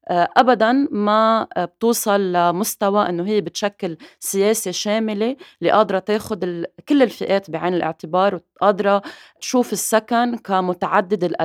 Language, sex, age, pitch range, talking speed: Arabic, female, 20-39, 170-225 Hz, 100 wpm